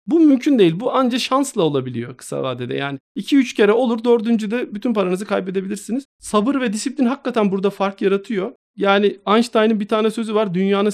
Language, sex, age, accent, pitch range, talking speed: Turkish, male, 40-59, native, 185-230 Hz, 175 wpm